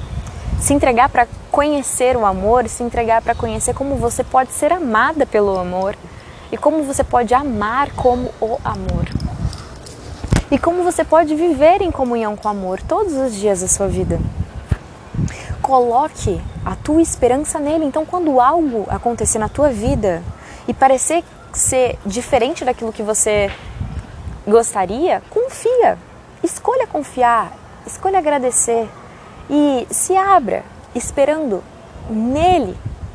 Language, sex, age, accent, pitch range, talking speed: Portuguese, female, 20-39, Brazilian, 205-305 Hz, 130 wpm